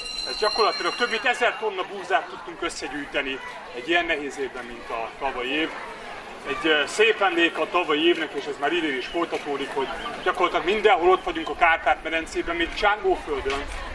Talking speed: 165 wpm